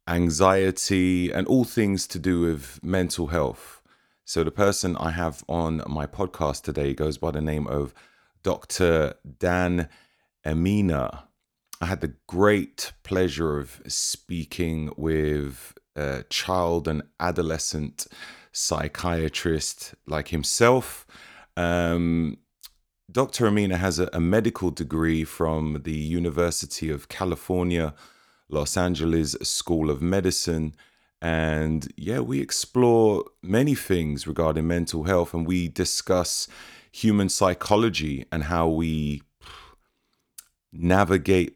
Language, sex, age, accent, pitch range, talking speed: English, male, 30-49, British, 80-95 Hz, 110 wpm